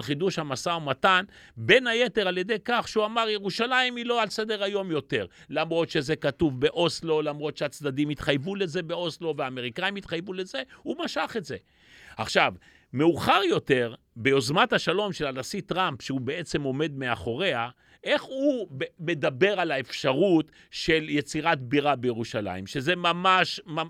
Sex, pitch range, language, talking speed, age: male, 150-200 Hz, Hebrew, 140 wpm, 40-59